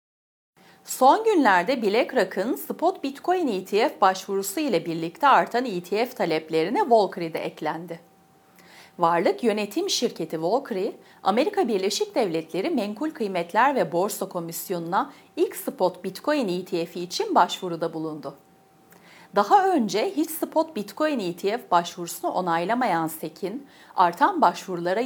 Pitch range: 175-265 Hz